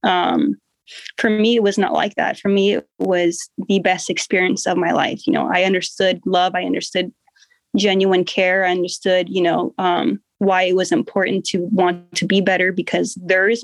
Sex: female